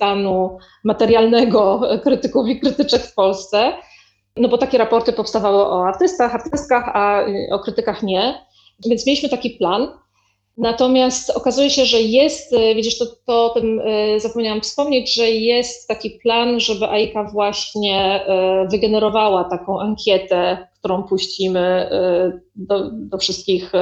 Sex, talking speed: female, 125 wpm